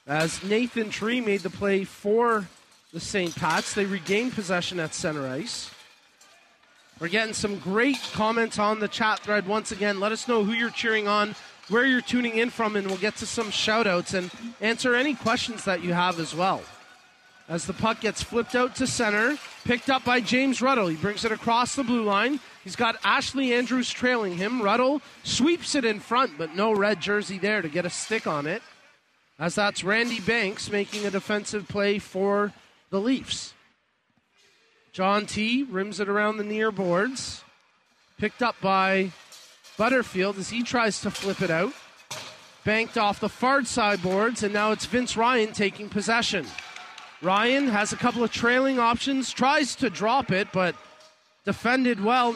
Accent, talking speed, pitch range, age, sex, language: American, 175 wpm, 200-240 Hz, 30-49, male, English